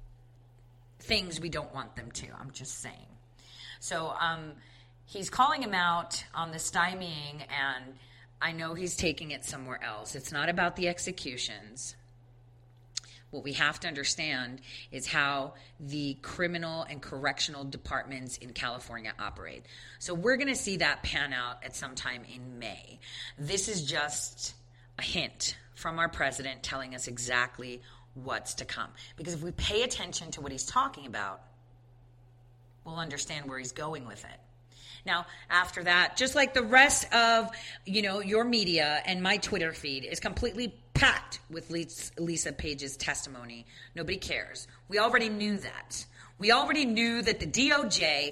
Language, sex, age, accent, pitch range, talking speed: English, female, 40-59, American, 125-175 Hz, 155 wpm